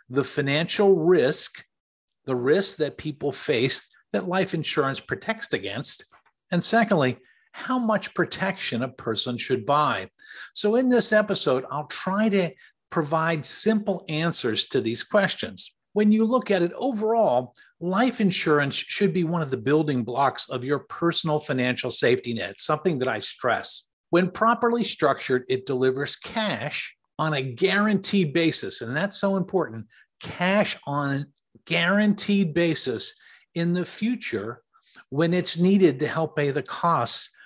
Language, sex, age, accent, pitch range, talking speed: English, male, 50-69, American, 150-205 Hz, 145 wpm